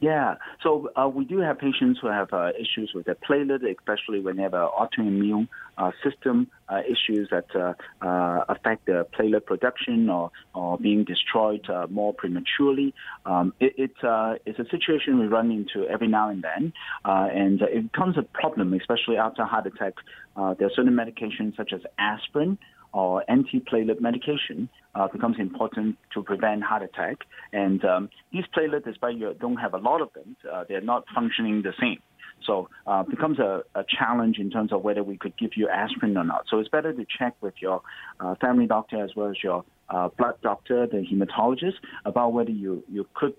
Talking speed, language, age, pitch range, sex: 190 wpm, English, 30-49, 100-130 Hz, male